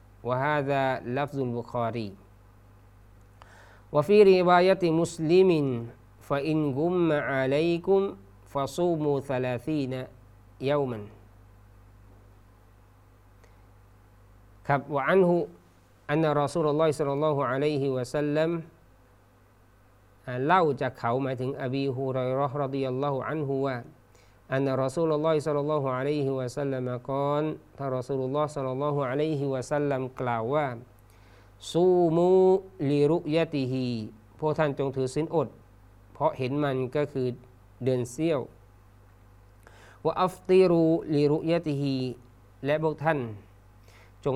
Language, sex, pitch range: Thai, male, 105-150 Hz